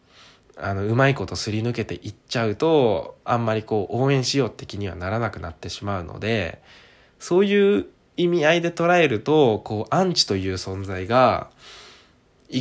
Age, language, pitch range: 20-39, Japanese, 100-135 Hz